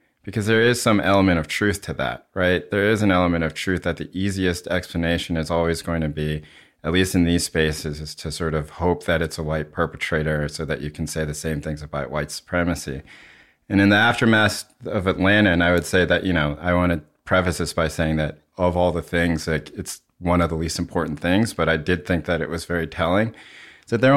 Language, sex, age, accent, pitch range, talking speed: English, male, 30-49, American, 80-90 Hz, 235 wpm